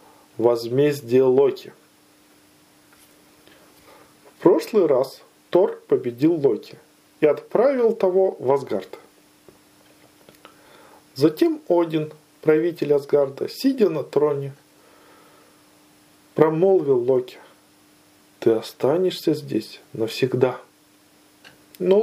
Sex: male